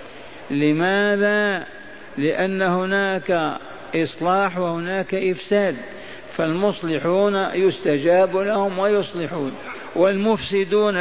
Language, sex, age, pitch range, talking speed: Arabic, male, 50-69, 160-190 Hz, 60 wpm